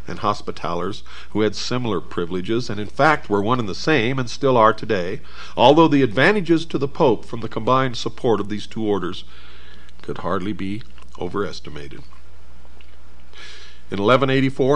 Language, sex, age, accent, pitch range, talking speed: English, male, 50-69, American, 95-135 Hz, 155 wpm